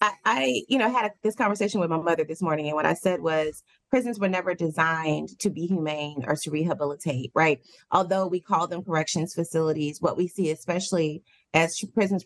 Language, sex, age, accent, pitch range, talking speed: English, female, 30-49, American, 155-190 Hz, 190 wpm